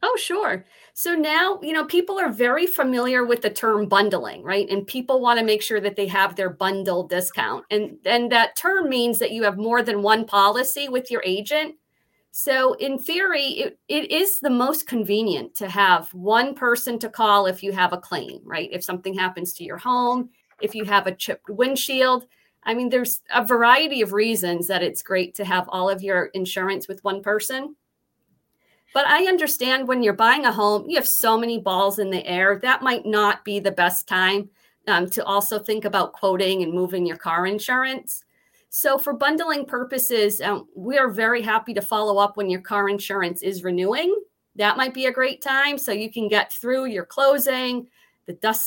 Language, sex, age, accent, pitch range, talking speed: English, female, 40-59, American, 195-255 Hz, 200 wpm